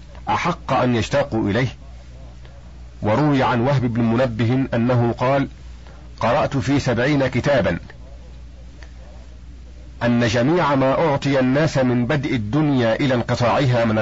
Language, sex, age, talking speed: Arabic, male, 50-69, 110 wpm